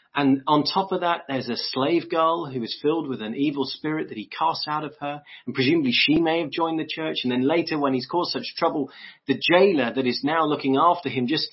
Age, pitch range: 30-49, 130-165 Hz